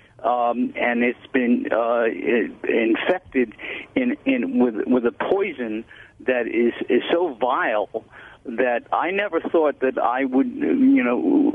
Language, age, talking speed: English, 50-69, 135 wpm